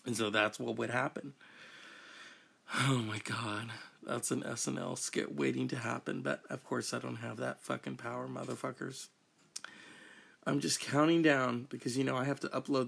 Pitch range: 115-160 Hz